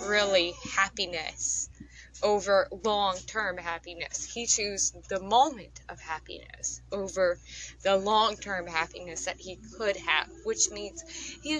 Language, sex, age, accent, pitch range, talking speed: English, female, 10-29, American, 175-210 Hz, 115 wpm